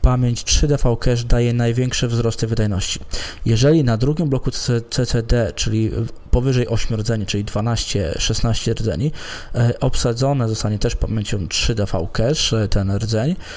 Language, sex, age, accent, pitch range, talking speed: Polish, male, 20-39, native, 110-130 Hz, 110 wpm